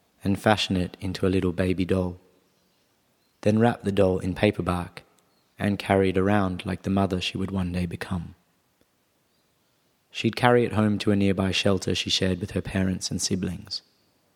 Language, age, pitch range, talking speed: English, 30-49, 95-105 Hz, 175 wpm